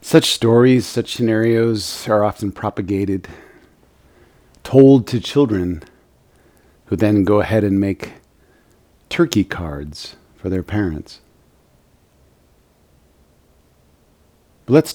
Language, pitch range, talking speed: English, 80-110 Hz, 90 wpm